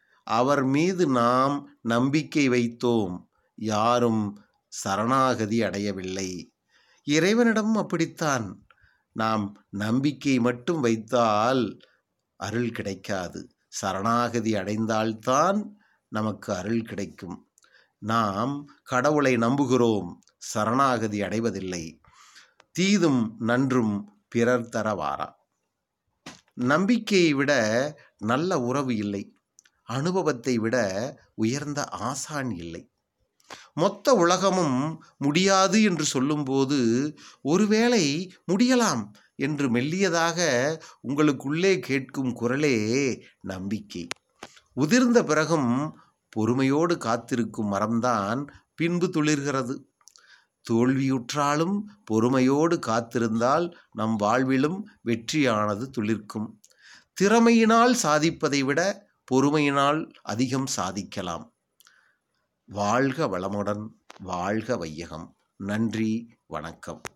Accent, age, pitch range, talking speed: Indian, 30-49, 110-155 Hz, 70 wpm